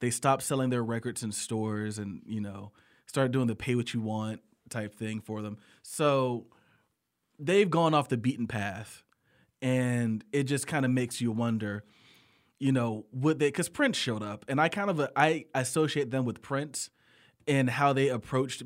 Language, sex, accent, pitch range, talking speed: English, male, American, 115-140 Hz, 165 wpm